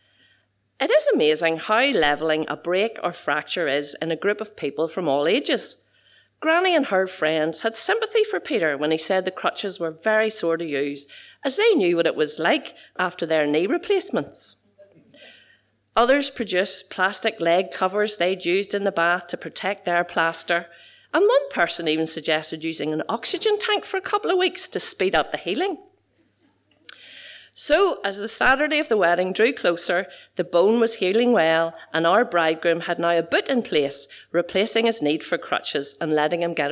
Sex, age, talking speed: female, 40-59, 185 wpm